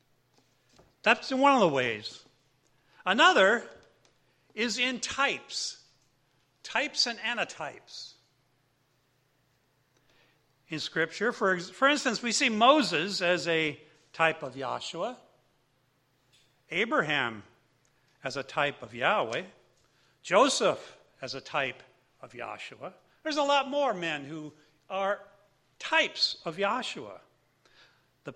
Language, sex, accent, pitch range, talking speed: English, male, American, 140-220 Hz, 100 wpm